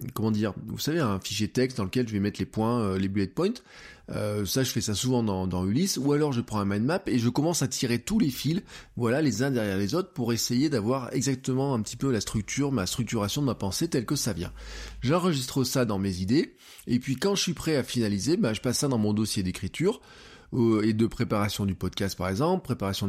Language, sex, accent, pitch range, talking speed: French, male, French, 105-140 Hz, 245 wpm